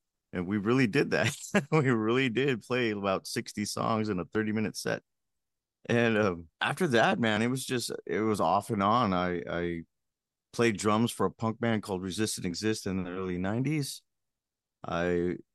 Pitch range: 90-110 Hz